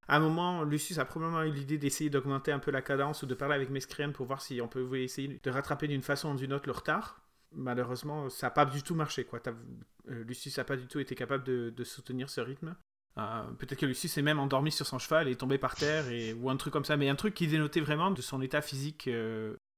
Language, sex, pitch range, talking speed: French, male, 130-160 Hz, 260 wpm